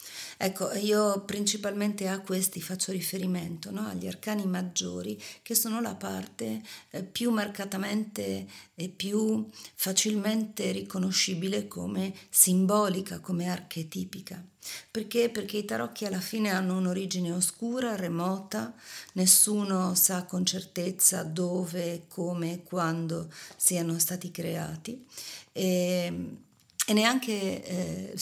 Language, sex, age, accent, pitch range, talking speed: Italian, female, 50-69, native, 175-210 Hz, 105 wpm